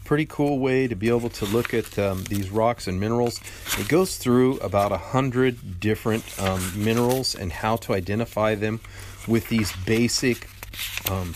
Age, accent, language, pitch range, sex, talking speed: 40-59, American, English, 95-115 Hz, male, 165 wpm